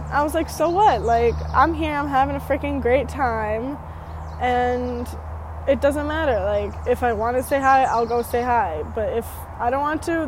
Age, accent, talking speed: 10-29, American, 205 wpm